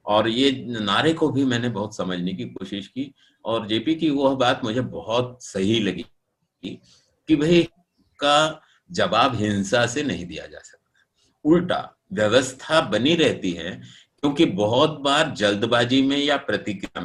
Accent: native